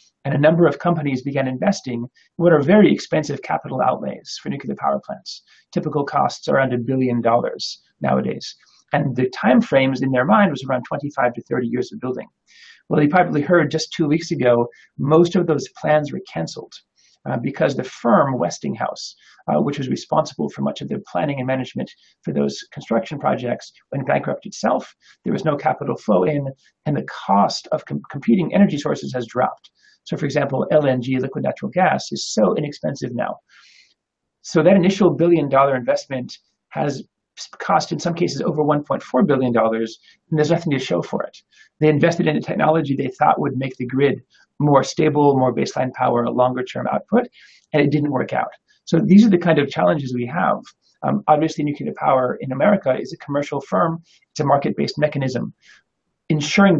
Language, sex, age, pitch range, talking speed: English, male, 40-59, 130-165 Hz, 185 wpm